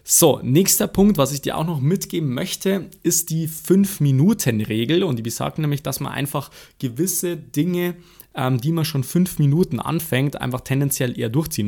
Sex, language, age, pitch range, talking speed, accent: male, German, 20-39, 125-155 Hz, 170 wpm, German